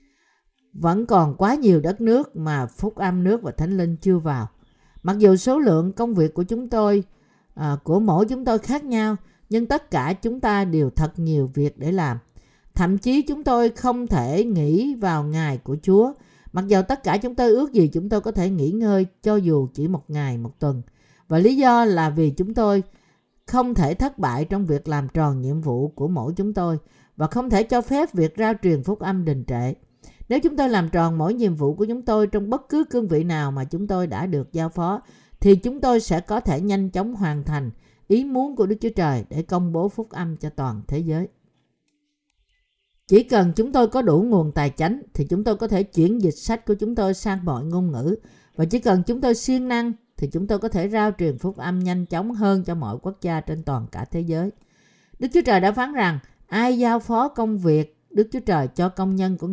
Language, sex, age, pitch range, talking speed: Vietnamese, female, 50-69, 160-225 Hz, 230 wpm